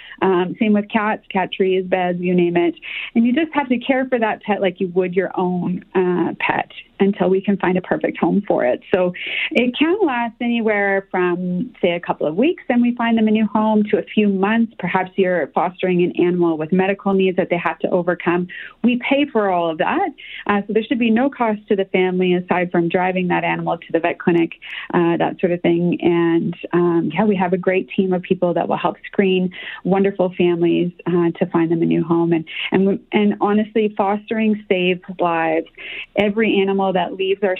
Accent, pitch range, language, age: American, 175-210 Hz, English, 30-49